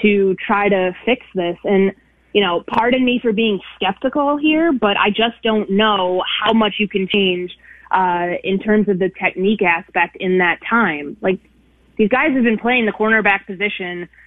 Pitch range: 185-220 Hz